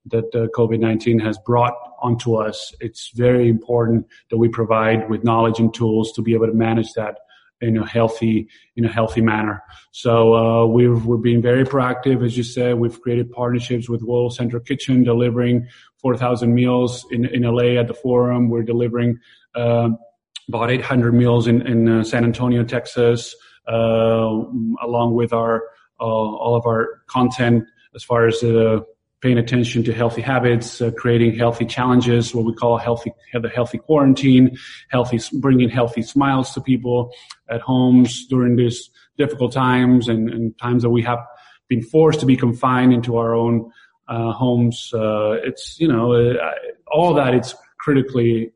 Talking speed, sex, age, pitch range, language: 170 wpm, male, 30-49, 115-125 Hz, English